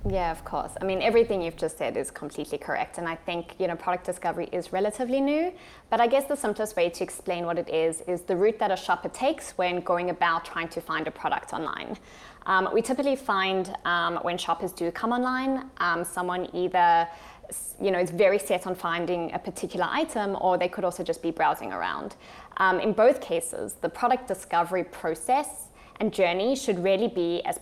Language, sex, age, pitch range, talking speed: English, female, 20-39, 175-225 Hz, 205 wpm